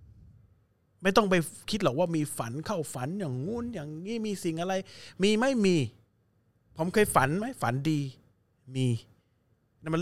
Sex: male